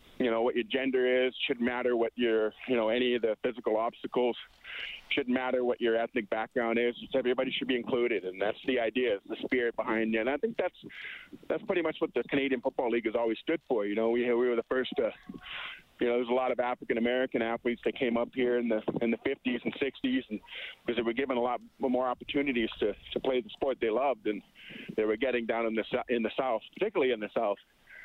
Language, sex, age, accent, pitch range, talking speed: English, male, 40-59, American, 115-130 Hz, 235 wpm